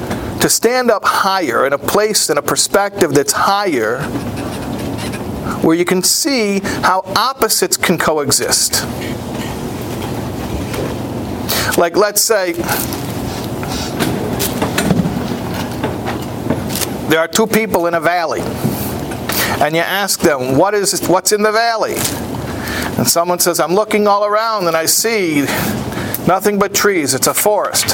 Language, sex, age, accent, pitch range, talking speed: English, male, 50-69, American, 155-205 Hz, 120 wpm